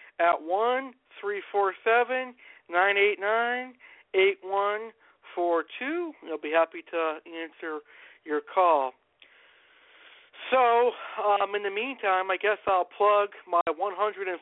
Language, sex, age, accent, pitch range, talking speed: English, male, 50-69, American, 170-230 Hz, 120 wpm